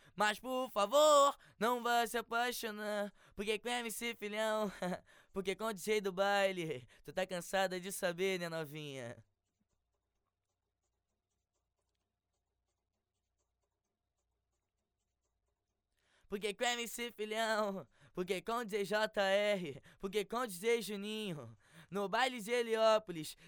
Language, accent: English, Brazilian